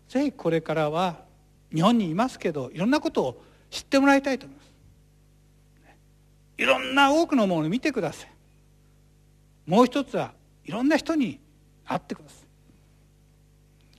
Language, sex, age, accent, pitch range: Japanese, male, 60-79, native, 145-235 Hz